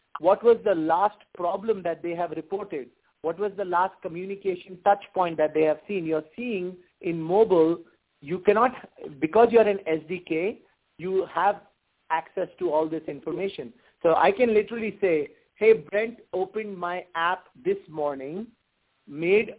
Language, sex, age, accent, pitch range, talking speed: English, male, 50-69, Indian, 165-210 Hz, 160 wpm